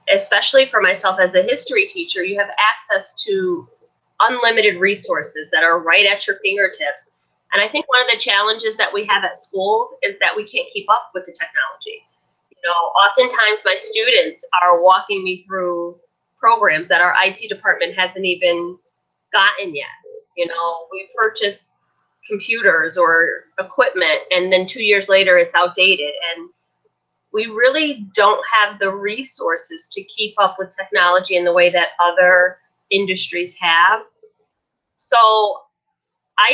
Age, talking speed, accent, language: 30-49, 155 wpm, American, English